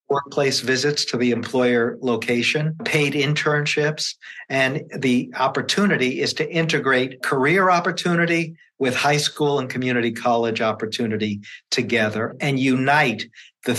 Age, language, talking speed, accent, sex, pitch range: 50-69, English, 120 wpm, American, male, 120-145 Hz